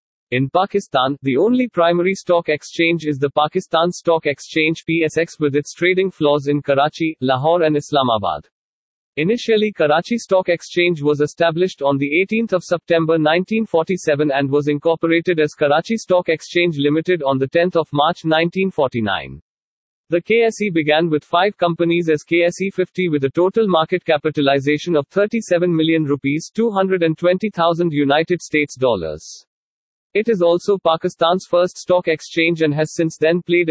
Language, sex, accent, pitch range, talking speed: English, male, Indian, 150-180 Hz, 145 wpm